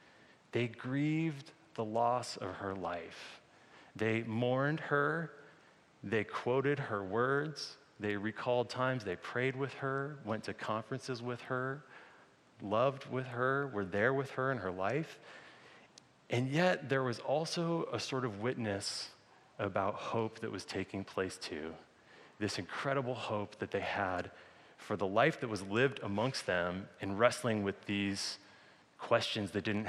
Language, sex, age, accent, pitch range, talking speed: English, male, 30-49, American, 100-130 Hz, 145 wpm